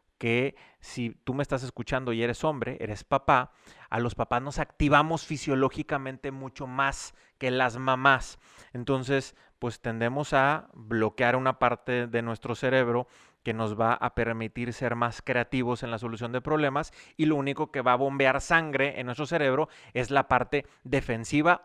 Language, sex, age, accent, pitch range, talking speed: Spanish, male, 30-49, Mexican, 115-145 Hz, 165 wpm